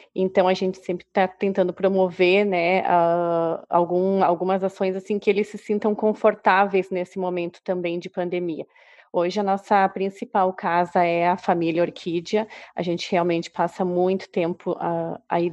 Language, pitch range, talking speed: Portuguese, 180-200 Hz, 140 wpm